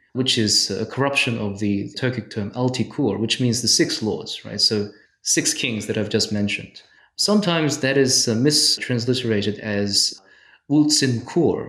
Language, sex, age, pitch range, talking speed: English, male, 20-39, 105-130 Hz, 145 wpm